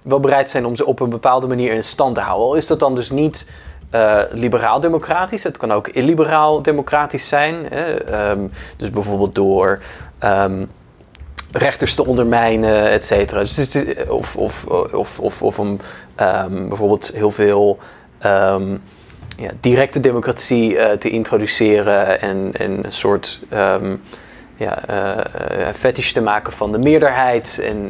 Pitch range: 100-130 Hz